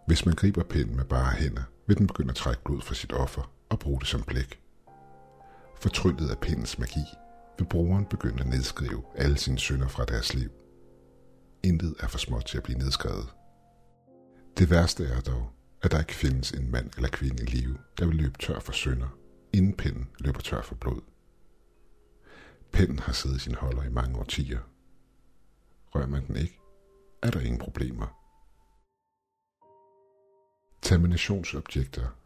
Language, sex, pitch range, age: Danish, male, 65-85 Hz, 60-79